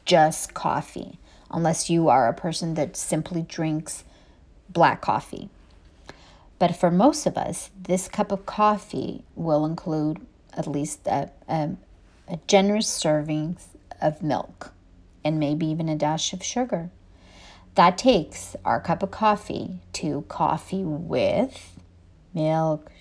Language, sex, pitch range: English, female, 155-195 Hz